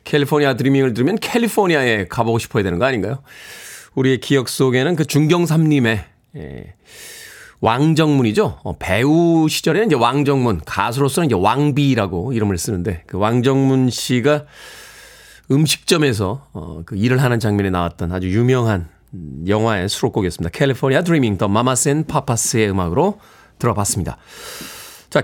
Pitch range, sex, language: 110-160 Hz, male, Korean